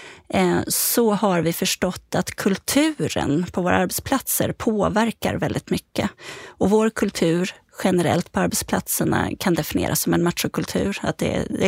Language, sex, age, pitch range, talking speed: Swedish, female, 30-49, 175-220 Hz, 130 wpm